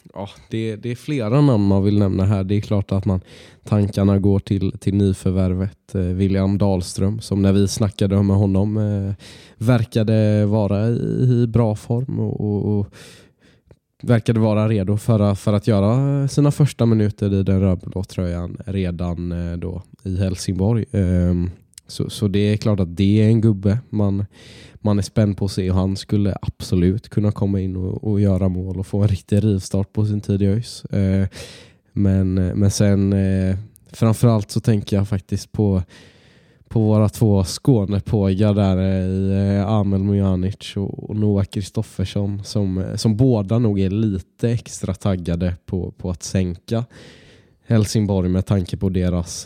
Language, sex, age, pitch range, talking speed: Swedish, male, 20-39, 95-110 Hz, 160 wpm